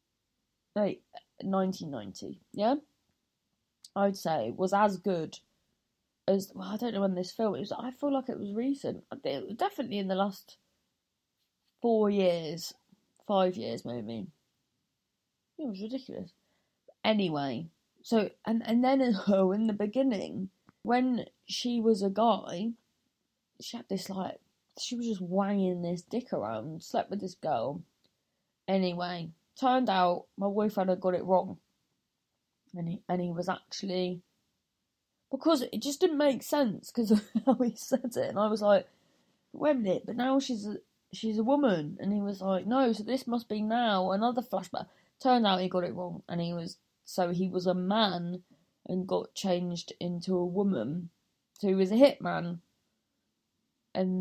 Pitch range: 185-235 Hz